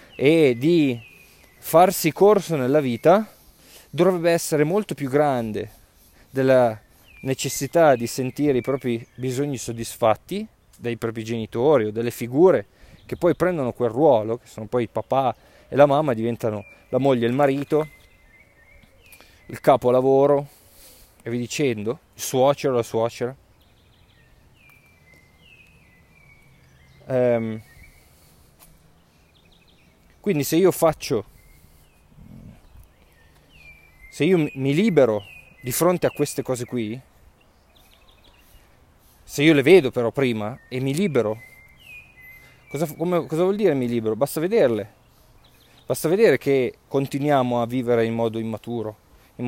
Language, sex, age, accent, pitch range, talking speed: Italian, male, 20-39, native, 110-140 Hz, 115 wpm